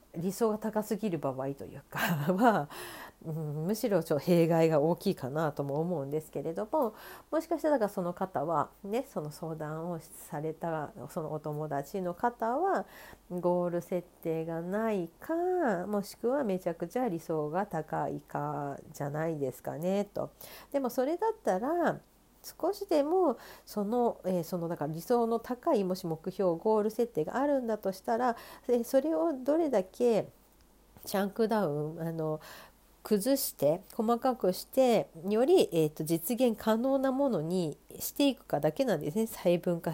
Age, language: 50-69, Japanese